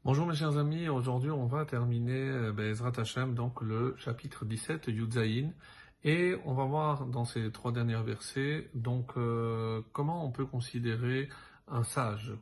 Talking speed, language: 155 wpm, French